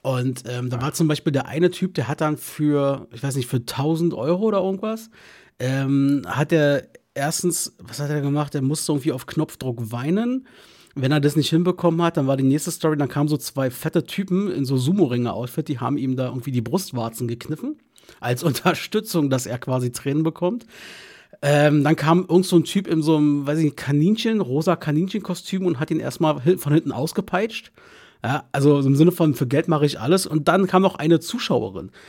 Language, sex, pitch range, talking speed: German, male, 135-175 Hz, 200 wpm